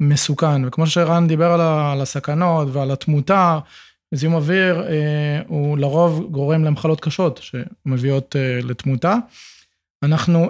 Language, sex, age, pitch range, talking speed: Hebrew, male, 20-39, 150-180 Hz, 115 wpm